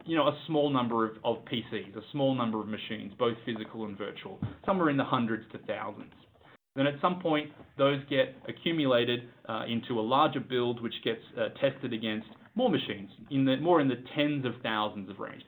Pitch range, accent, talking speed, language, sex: 110-135 Hz, Australian, 200 wpm, English, male